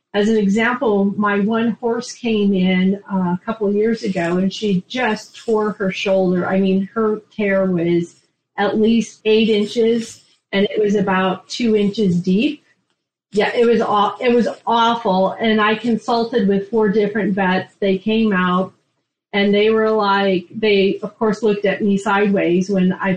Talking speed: 170 wpm